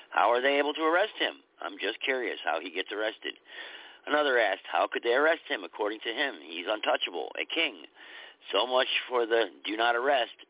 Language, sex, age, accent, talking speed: English, male, 50-69, American, 200 wpm